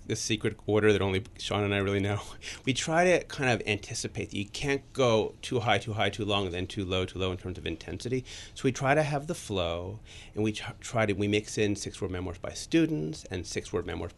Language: English